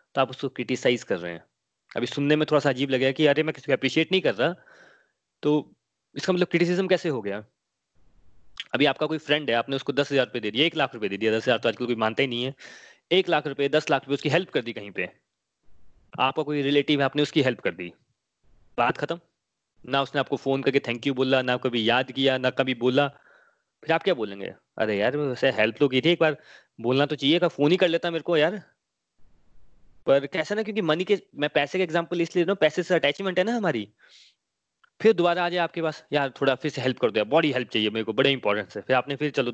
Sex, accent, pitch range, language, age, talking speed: male, native, 130-160 Hz, Hindi, 20-39, 235 wpm